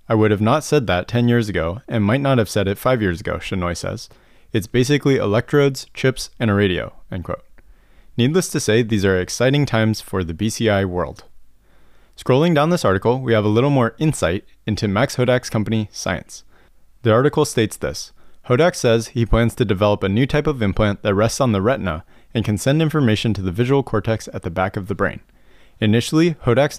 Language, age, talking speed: English, 20-39, 205 wpm